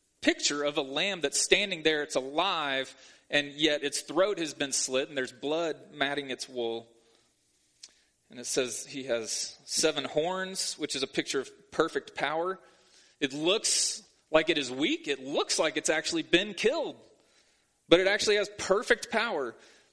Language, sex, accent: English, male, American